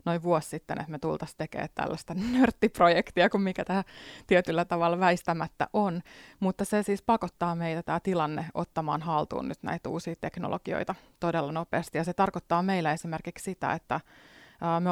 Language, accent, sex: Finnish, native, female